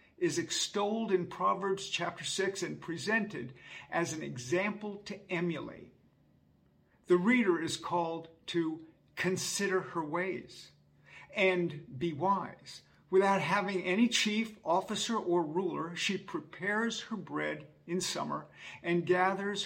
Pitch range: 160-200 Hz